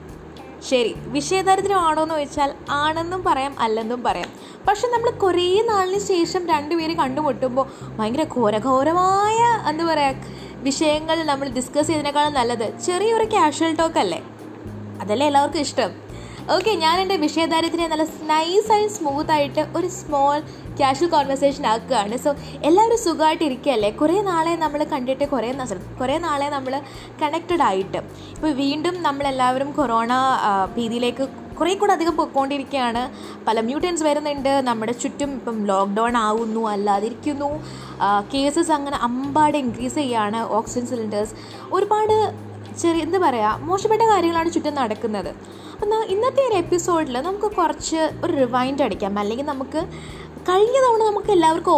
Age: 20-39